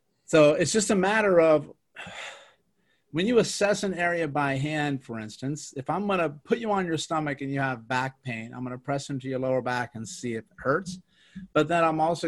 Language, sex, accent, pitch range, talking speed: English, male, American, 130-155 Hz, 225 wpm